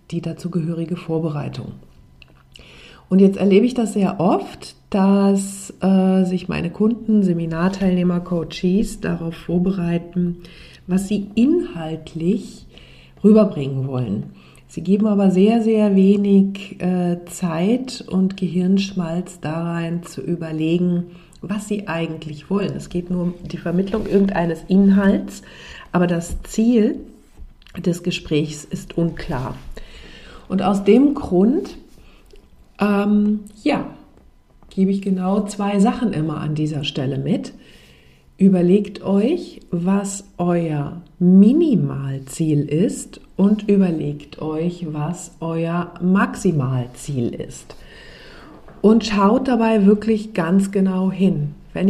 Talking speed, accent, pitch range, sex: 110 wpm, German, 165-200 Hz, female